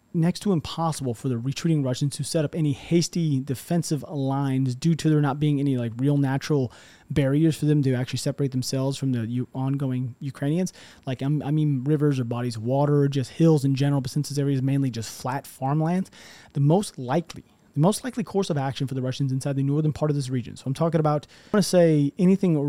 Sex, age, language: male, 30-49, English